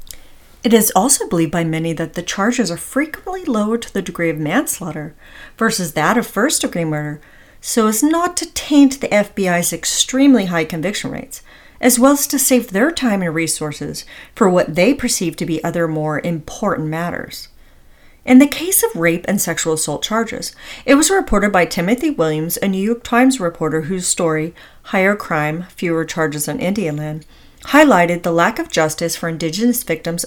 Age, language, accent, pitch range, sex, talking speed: 40-59, English, American, 165-245 Hz, female, 175 wpm